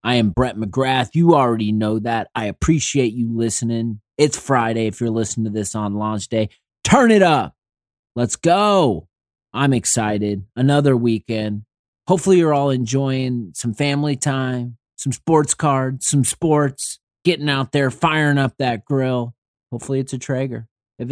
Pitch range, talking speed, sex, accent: 110-140 Hz, 155 wpm, male, American